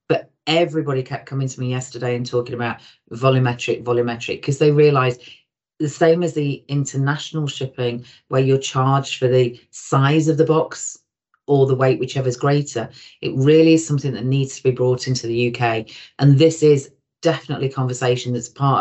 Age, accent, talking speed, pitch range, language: 40-59, British, 170 wpm, 120-140 Hz, English